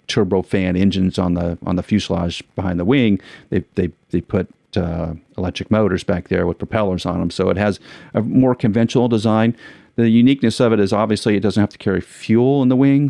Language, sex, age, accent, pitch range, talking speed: English, male, 40-59, American, 95-120 Hz, 205 wpm